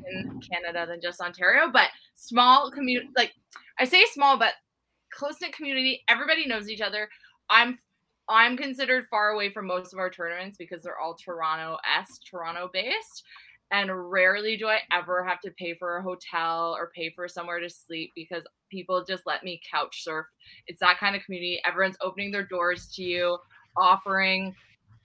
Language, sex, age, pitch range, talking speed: English, female, 20-39, 175-225 Hz, 170 wpm